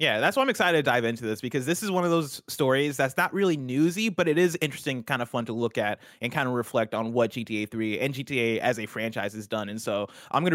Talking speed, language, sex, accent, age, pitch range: 280 wpm, English, male, American, 20-39, 120-155 Hz